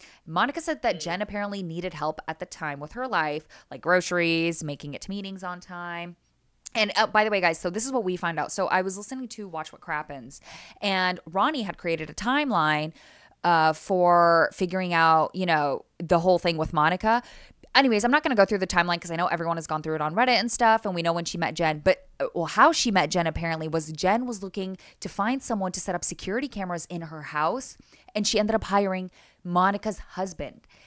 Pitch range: 165-210 Hz